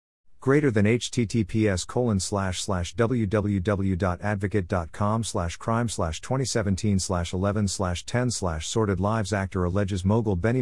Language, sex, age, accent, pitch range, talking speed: English, male, 50-69, American, 95-115 Hz, 130 wpm